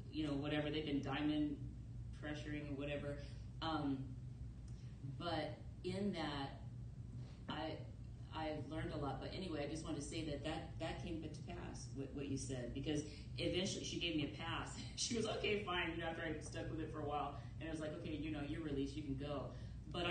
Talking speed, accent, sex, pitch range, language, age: 205 wpm, American, female, 135-180 Hz, English, 30-49